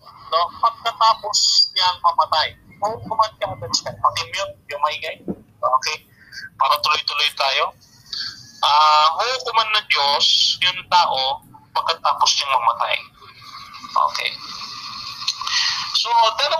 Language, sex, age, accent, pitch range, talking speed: English, male, 30-49, Filipino, 150-230 Hz, 125 wpm